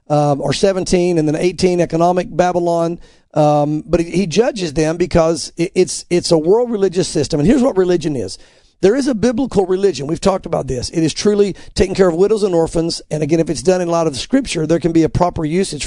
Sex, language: male, English